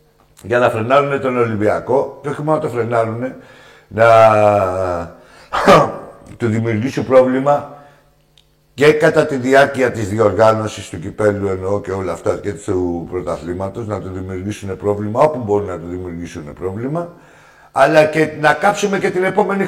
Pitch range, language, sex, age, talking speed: 105-155 Hz, Greek, male, 60-79, 145 wpm